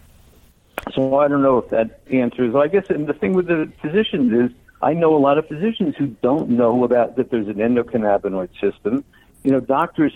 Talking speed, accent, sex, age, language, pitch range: 200 wpm, American, male, 60-79, English, 115-145 Hz